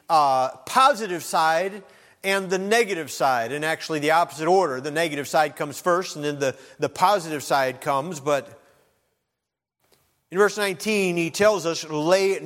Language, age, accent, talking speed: English, 40-59, American, 155 wpm